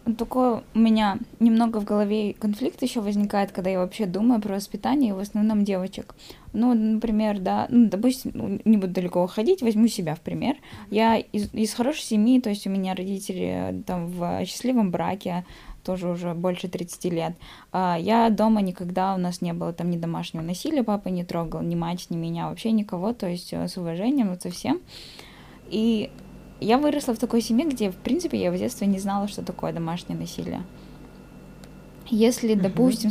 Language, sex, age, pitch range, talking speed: Russian, female, 10-29, 180-220 Hz, 180 wpm